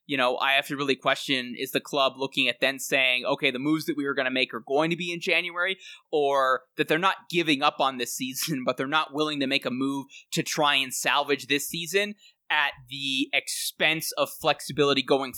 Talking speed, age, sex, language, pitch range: 225 wpm, 20-39, male, English, 130-150 Hz